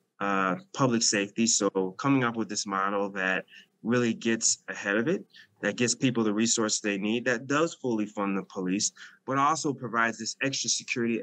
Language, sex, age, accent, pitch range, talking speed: English, male, 20-39, American, 105-130 Hz, 180 wpm